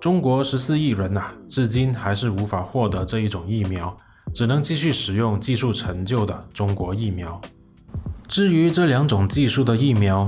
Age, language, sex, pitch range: 20-39, Chinese, male, 100-125 Hz